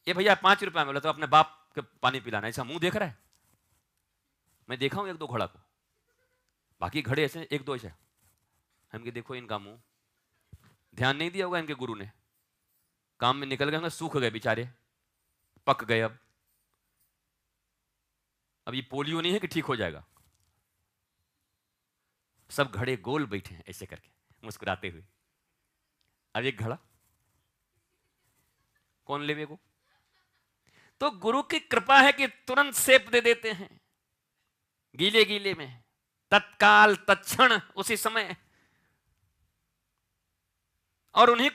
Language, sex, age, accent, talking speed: Hindi, male, 40-59, native, 135 wpm